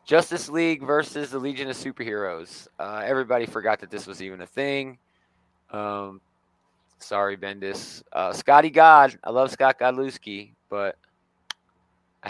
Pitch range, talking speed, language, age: 100-145 Hz, 135 wpm, English, 20-39